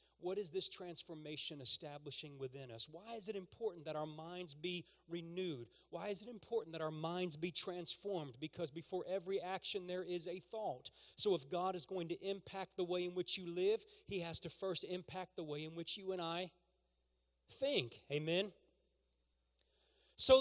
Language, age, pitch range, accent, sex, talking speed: English, 30-49, 130-185 Hz, American, male, 180 wpm